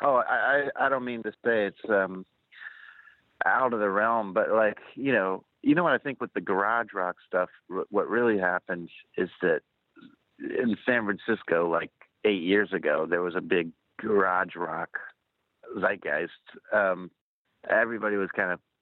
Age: 40-59